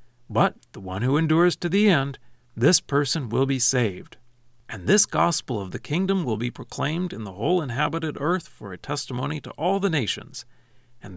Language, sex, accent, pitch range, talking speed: English, male, American, 120-150 Hz, 190 wpm